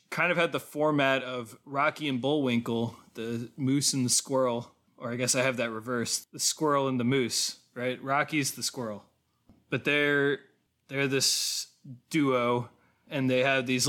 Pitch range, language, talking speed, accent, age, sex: 120-140 Hz, English, 170 wpm, American, 20-39, male